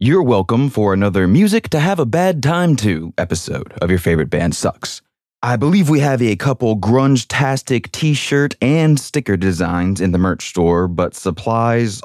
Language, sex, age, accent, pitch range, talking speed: English, male, 20-39, American, 90-125 Hz, 140 wpm